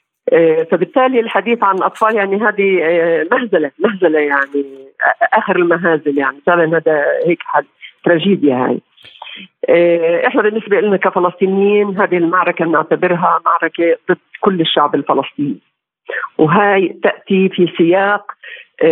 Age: 50-69